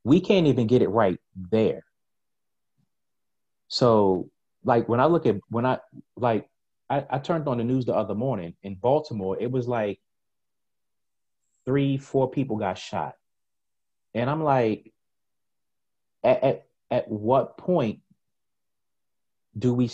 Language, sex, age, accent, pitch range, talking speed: English, male, 30-49, American, 105-140 Hz, 135 wpm